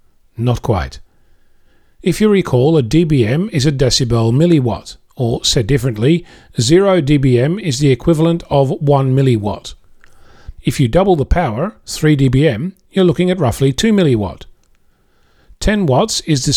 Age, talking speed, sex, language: 40-59, 140 wpm, male, English